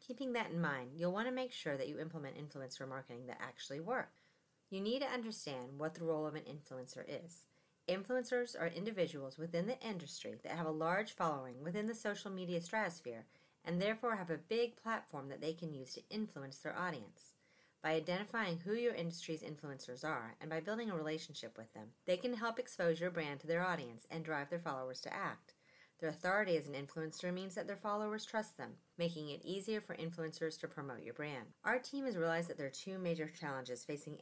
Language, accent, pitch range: English, American, 145-190 Hz